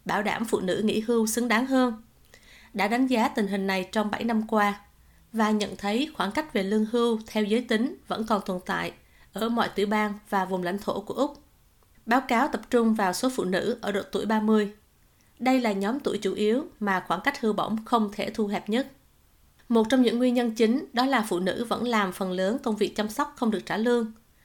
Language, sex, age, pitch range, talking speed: Vietnamese, female, 20-39, 200-235 Hz, 230 wpm